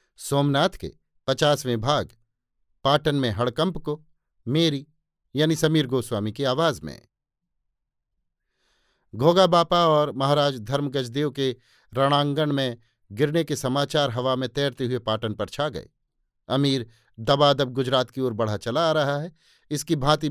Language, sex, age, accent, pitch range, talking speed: Hindi, male, 50-69, native, 125-155 Hz, 135 wpm